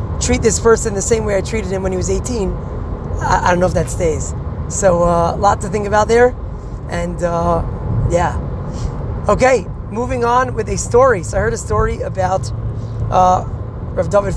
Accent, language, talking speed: American, English, 190 wpm